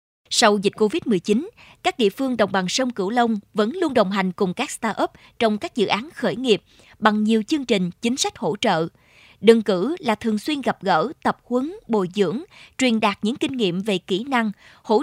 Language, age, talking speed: Vietnamese, 20-39, 210 wpm